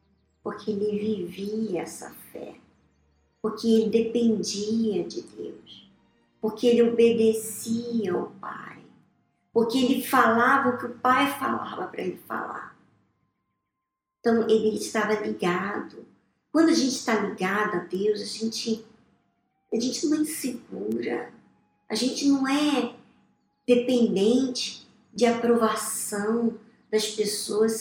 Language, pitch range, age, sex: Portuguese, 220-325 Hz, 50-69, male